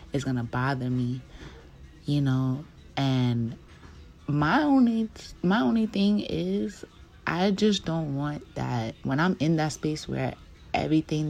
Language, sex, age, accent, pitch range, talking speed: English, female, 20-39, American, 120-150 Hz, 140 wpm